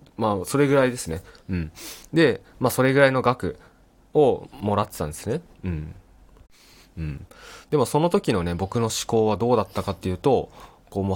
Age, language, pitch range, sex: 20-39, Japanese, 95-140 Hz, male